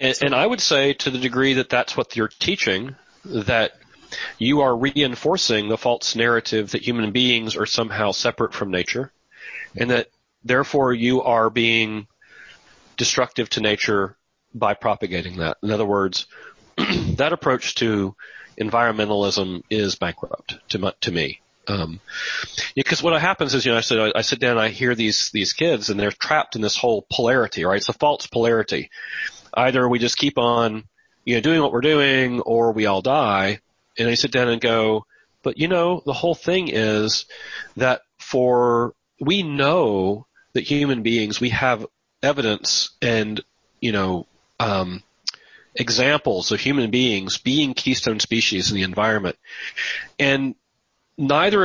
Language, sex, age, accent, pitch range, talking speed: English, male, 40-59, American, 105-130 Hz, 155 wpm